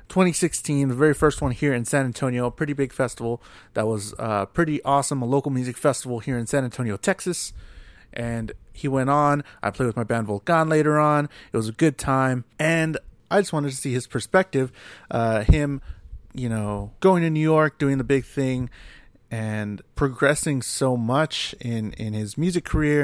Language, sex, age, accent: English, male, 30-49, American